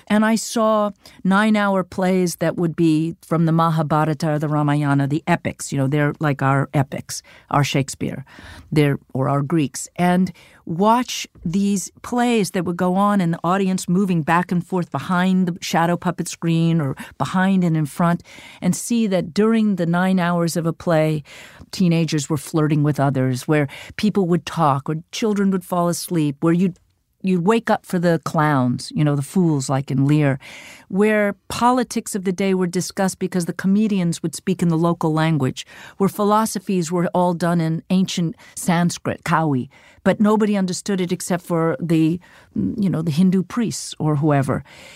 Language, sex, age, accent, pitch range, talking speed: English, female, 50-69, American, 155-195 Hz, 175 wpm